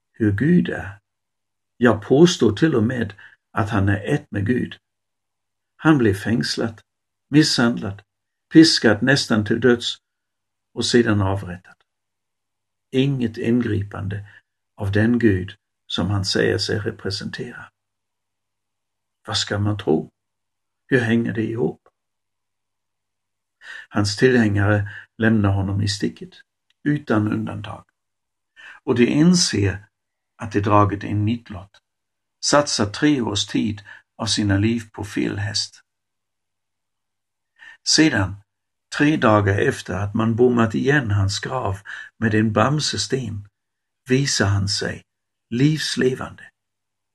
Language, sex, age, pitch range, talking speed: Swedish, male, 60-79, 100-115 Hz, 110 wpm